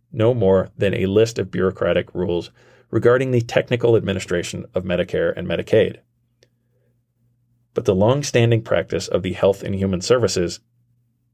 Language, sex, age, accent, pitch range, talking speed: English, male, 40-59, American, 95-120 Hz, 145 wpm